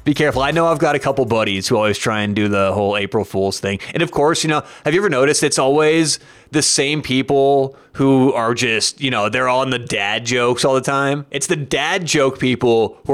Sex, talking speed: male, 240 wpm